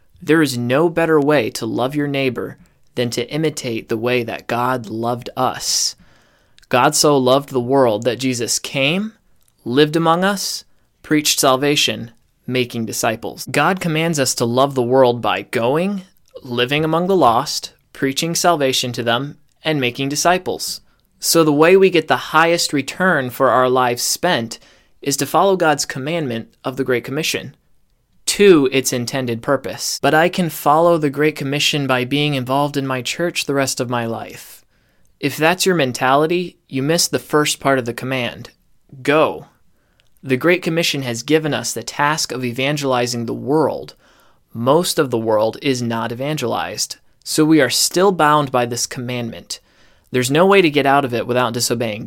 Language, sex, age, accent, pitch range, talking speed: English, male, 20-39, American, 125-155 Hz, 170 wpm